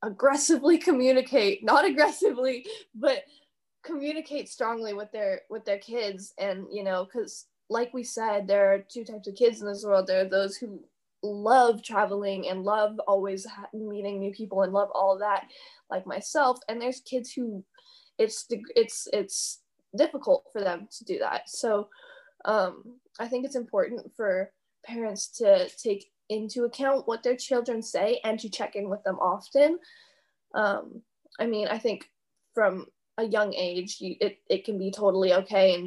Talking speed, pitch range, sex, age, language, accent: 165 wpm, 195-250 Hz, female, 10-29, English, American